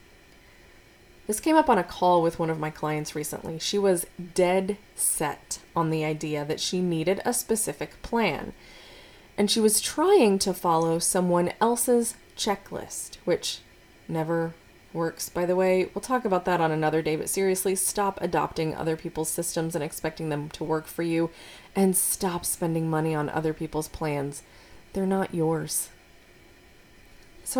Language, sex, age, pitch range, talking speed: English, female, 20-39, 160-205 Hz, 155 wpm